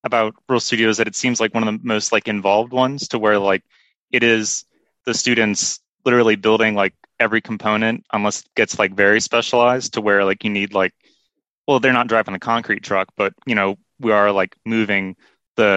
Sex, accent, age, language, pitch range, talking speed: male, American, 20-39, English, 100-115 Hz, 200 wpm